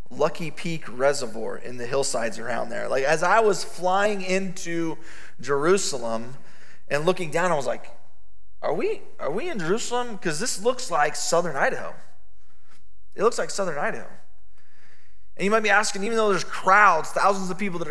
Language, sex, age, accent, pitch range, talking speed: English, male, 20-39, American, 135-185 Hz, 170 wpm